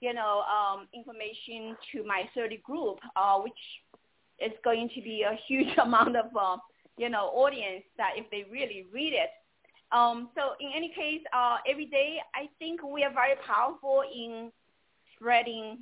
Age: 30-49